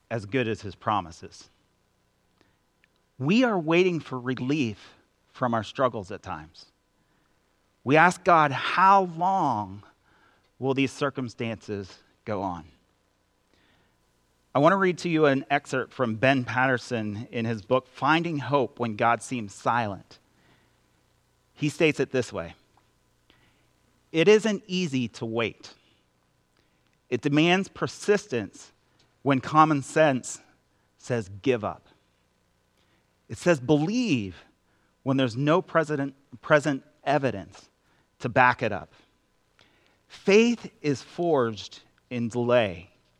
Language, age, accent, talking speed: English, 30-49, American, 115 wpm